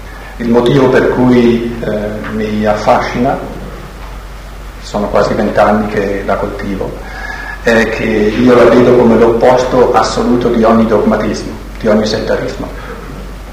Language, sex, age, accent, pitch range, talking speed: Italian, male, 50-69, native, 110-130 Hz, 120 wpm